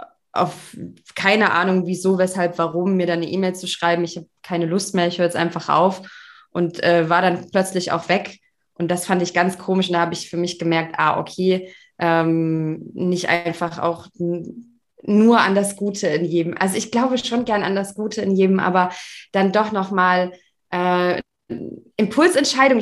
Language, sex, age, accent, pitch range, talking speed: German, female, 20-39, German, 175-195 Hz, 180 wpm